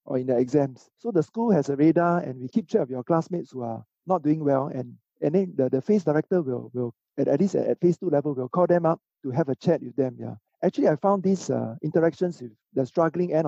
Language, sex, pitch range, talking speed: English, male, 135-180 Hz, 265 wpm